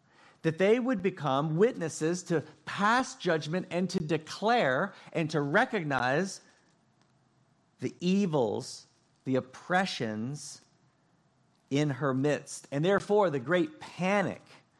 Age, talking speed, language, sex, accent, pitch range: 40-59, 105 wpm, English, male, American, 130-175 Hz